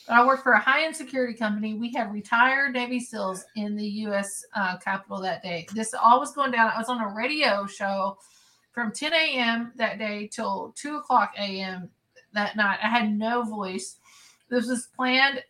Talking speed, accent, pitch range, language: 185 wpm, American, 210-255 Hz, English